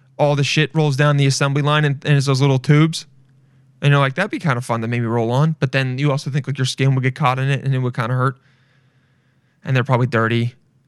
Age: 20-39